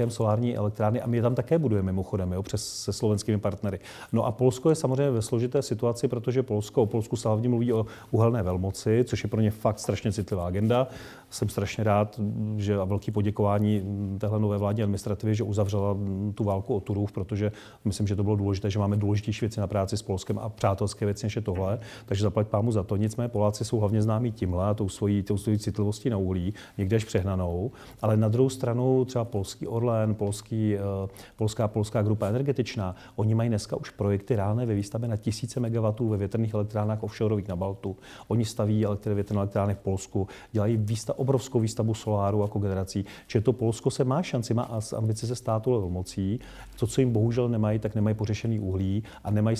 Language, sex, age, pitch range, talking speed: Czech, male, 40-59, 100-115 Hz, 190 wpm